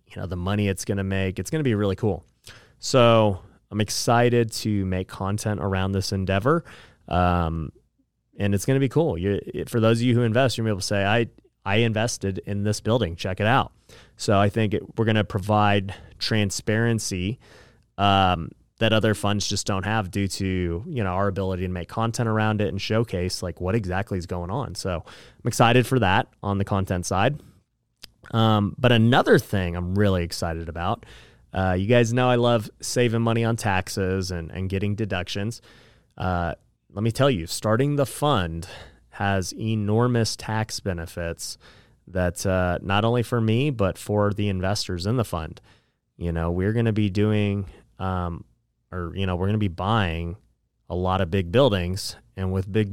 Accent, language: American, English